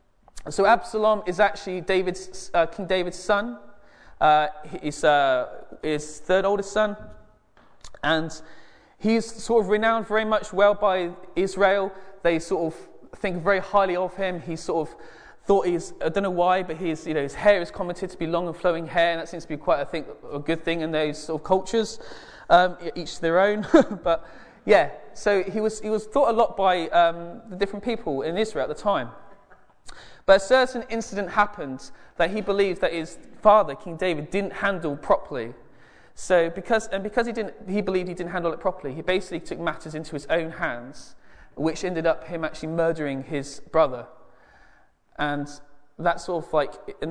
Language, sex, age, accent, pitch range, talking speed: English, male, 20-39, British, 155-200 Hz, 190 wpm